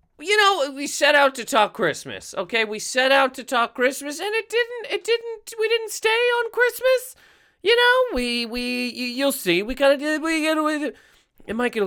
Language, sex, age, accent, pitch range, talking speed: English, male, 30-49, American, 190-290 Hz, 185 wpm